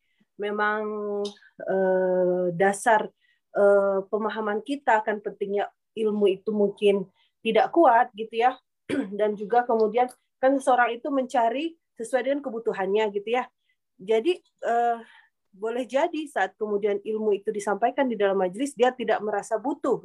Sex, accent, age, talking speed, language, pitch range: female, native, 30-49, 120 wpm, Indonesian, 205-270 Hz